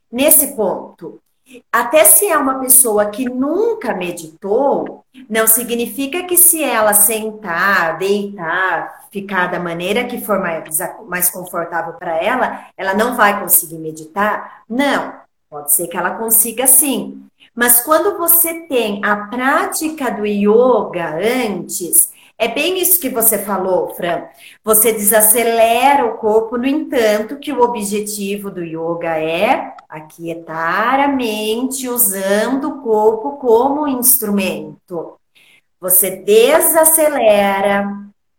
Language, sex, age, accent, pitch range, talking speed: Portuguese, female, 30-49, Brazilian, 195-275 Hz, 120 wpm